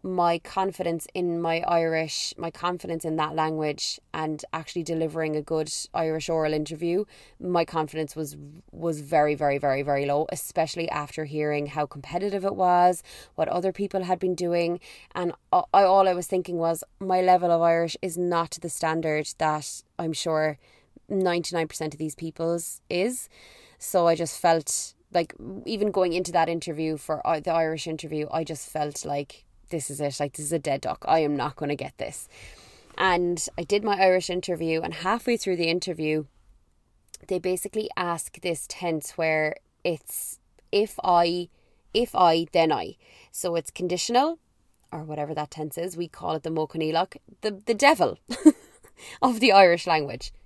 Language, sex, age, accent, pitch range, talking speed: English, female, 20-39, Irish, 155-180 Hz, 170 wpm